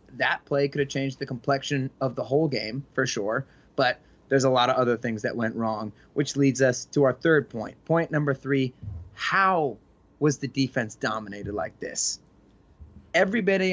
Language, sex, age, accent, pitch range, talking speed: English, male, 20-39, American, 120-150 Hz, 185 wpm